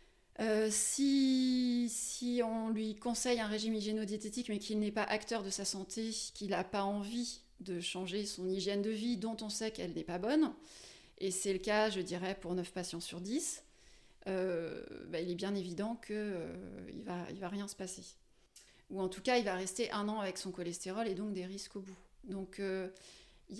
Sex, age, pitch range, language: female, 20-39, 195-240 Hz, French